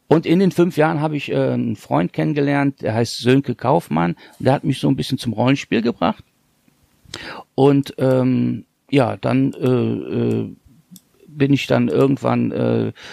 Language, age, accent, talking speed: German, 40-59, German, 165 wpm